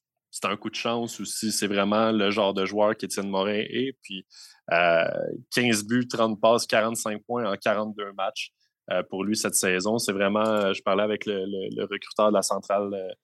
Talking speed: 200 wpm